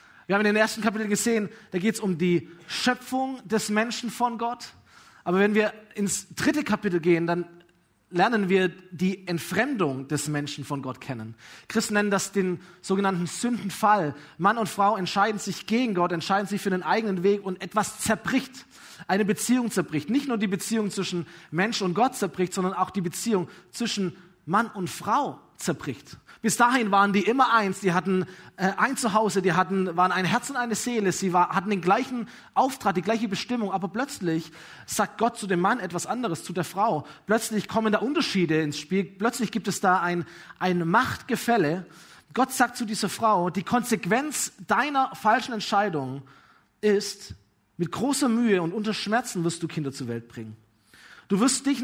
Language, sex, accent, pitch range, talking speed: German, male, German, 180-225 Hz, 180 wpm